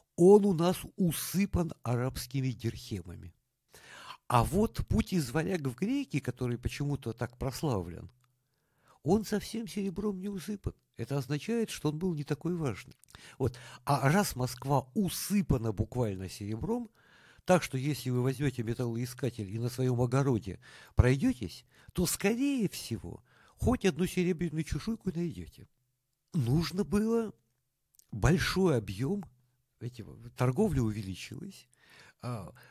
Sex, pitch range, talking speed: male, 115-170 Hz, 110 wpm